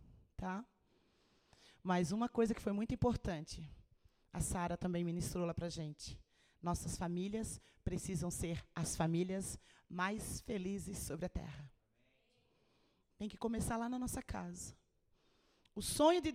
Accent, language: Brazilian, Portuguese